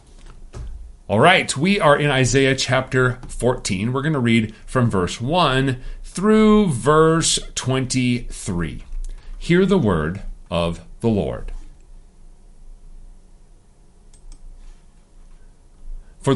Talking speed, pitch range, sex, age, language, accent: 90 wpm, 95-125 Hz, male, 40-59, English, American